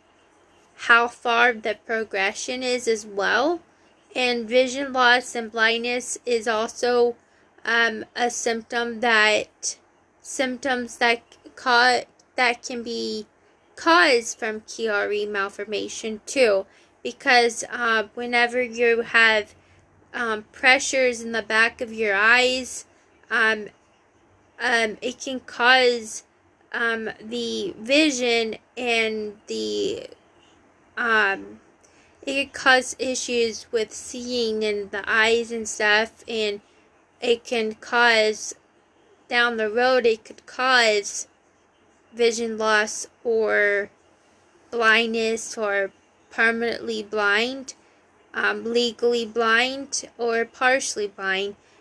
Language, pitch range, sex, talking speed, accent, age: English, 220-245 Hz, female, 100 wpm, American, 10-29